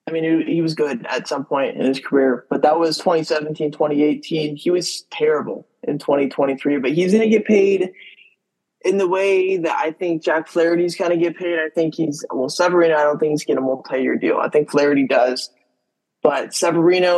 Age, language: 20-39, English